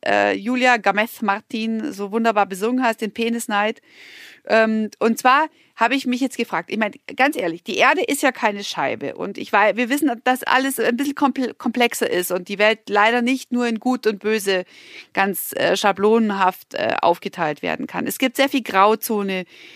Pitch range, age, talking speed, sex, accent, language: 200-270 Hz, 40-59, 165 wpm, female, German, German